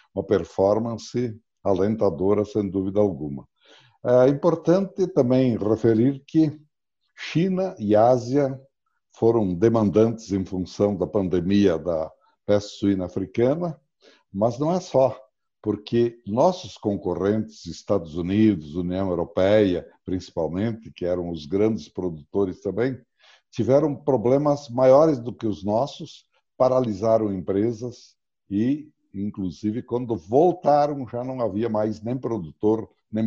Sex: male